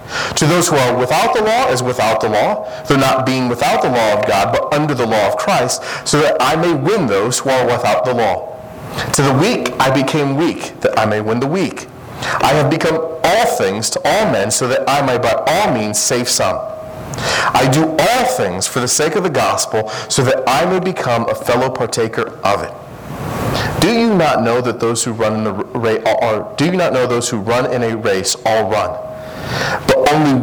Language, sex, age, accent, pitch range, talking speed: English, male, 40-59, American, 120-145 Hz, 215 wpm